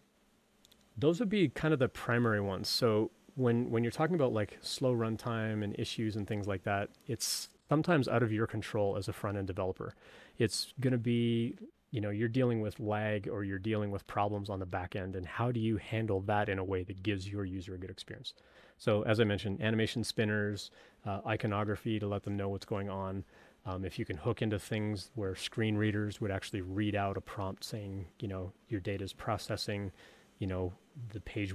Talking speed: 210 wpm